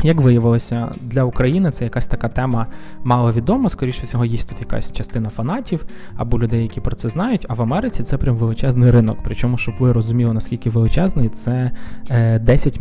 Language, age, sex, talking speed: Ukrainian, 20-39, male, 175 wpm